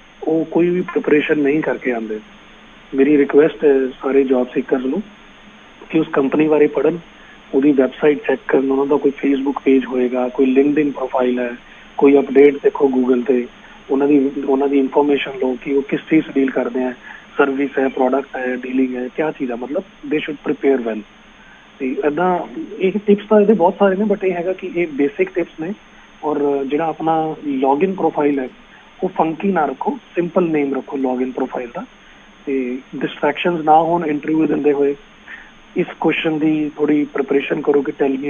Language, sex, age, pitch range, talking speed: Punjabi, male, 30-49, 135-165 Hz, 175 wpm